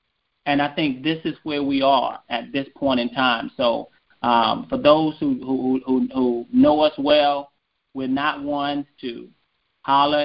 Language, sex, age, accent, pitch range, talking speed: English, male, 30-49, American, 130-175 Hz, 170 wpm